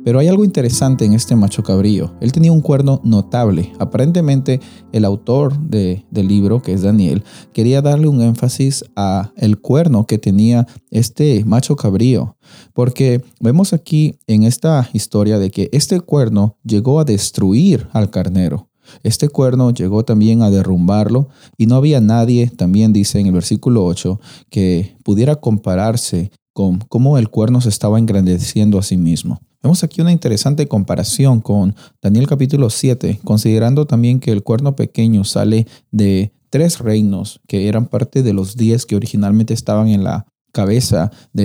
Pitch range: 105-130 Hz